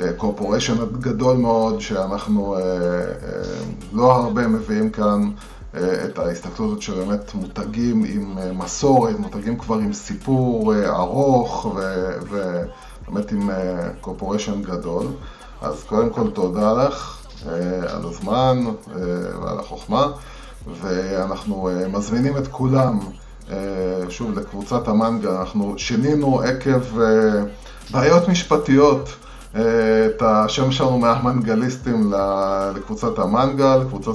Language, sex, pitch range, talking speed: Hebrew, male, 100-125 Hz, 90 wpm